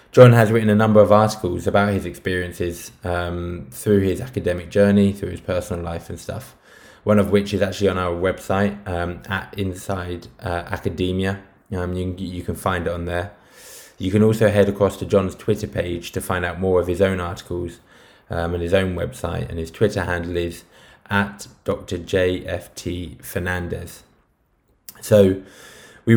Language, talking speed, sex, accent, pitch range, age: English, 170 wpm, male, British, 90-100 Hz, 20-39